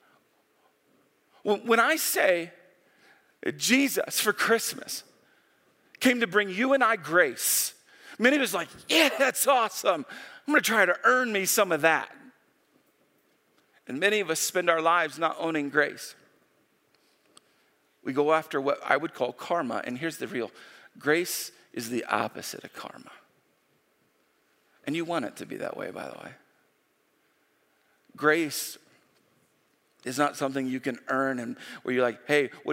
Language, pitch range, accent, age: English, 150-205 Hz, American, 40-59